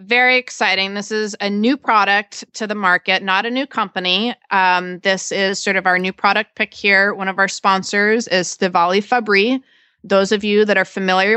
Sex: female